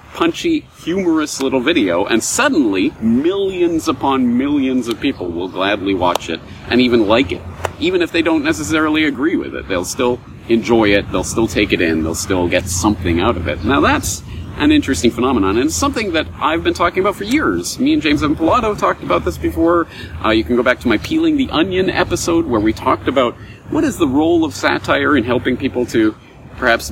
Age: 40-59